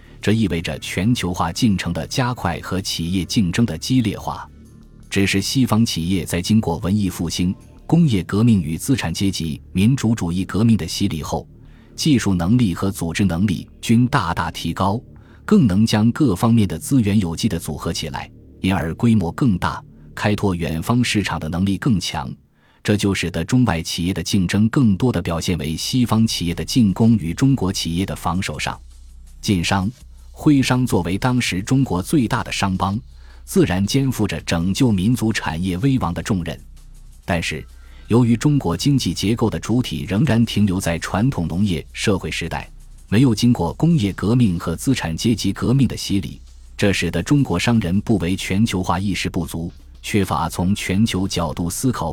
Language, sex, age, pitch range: Chinese, male, 20-39, 85-115 Hz